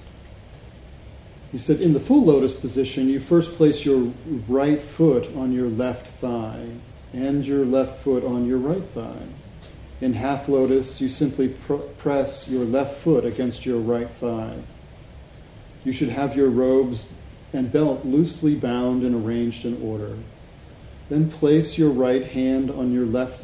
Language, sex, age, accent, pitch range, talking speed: English, male, 40-59, American, 115-135 Hz, 150 wpm